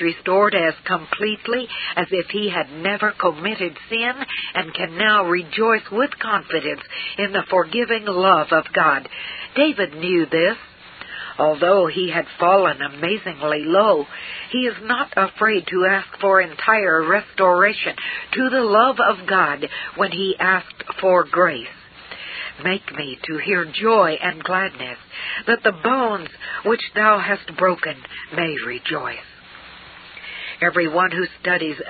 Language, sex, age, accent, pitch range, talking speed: English, female, 60-79, American, 170-215 Hz, 130 wpm